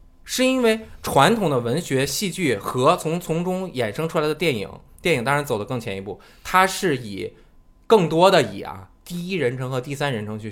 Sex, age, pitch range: male, 20-39, 120-185 Hz